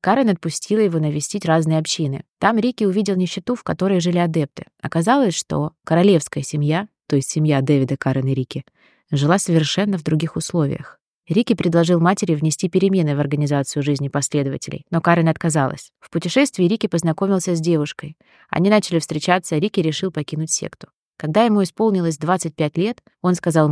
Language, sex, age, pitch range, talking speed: Russian, female, 20-39, 150-190 Hz, 160 wpm